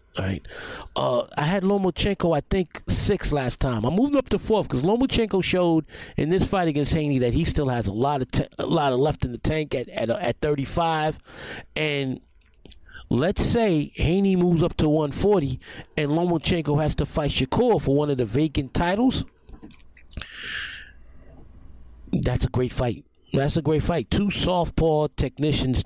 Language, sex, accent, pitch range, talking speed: English, male, American, 120-155 Hz, 170 wpm